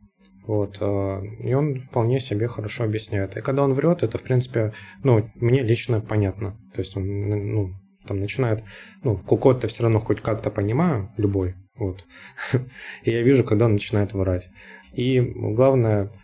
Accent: native